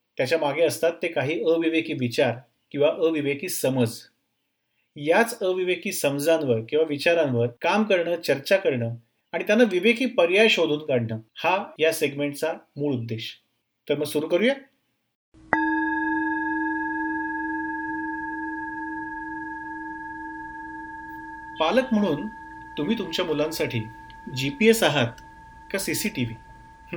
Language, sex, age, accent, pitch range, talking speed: Marathi, male, 30-49, native, 125-185 Hz, 50 wpm